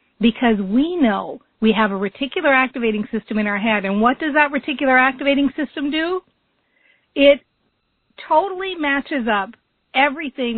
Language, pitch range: English, 215-275 Hz